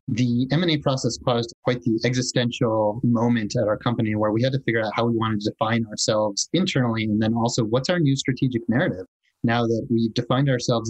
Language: English